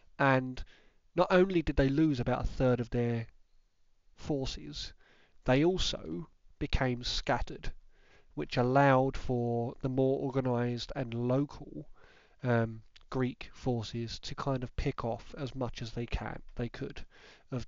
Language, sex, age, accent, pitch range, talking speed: English, male, 30-49, British, 115-140 Hz, 135 wpm